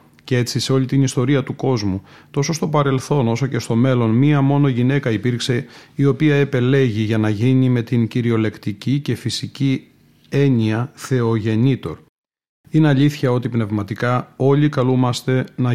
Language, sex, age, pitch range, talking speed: Greek, male, 30-49, 115-135 Hz, 150 wpm